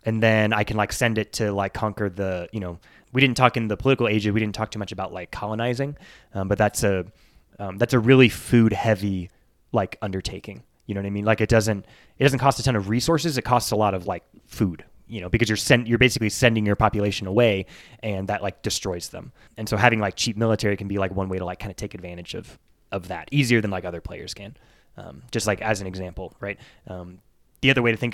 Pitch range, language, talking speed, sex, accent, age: 100-120 Hz, English, 245 wpm, male, American, 20-39